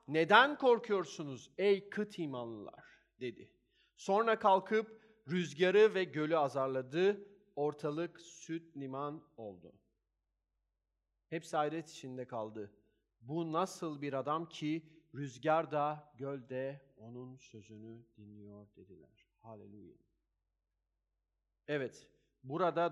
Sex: male